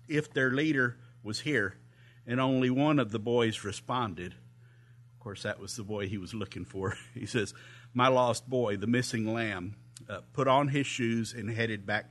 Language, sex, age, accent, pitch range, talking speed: English, male, 50-69, American, 115-130 Hz, 190 wpm